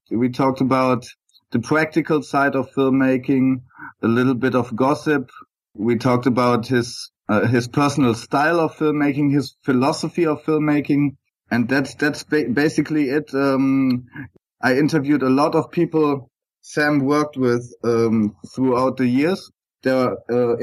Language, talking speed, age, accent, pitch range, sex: English, 145 wpm, 30-49, German, 125-145 Hz, male